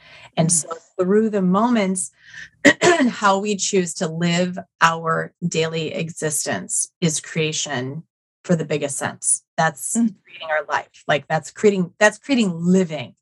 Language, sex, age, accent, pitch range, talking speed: English, female, 30-49, American, 165-210 Hz, 130 wpm